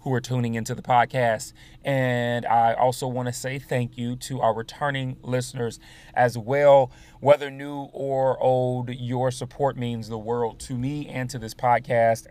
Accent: American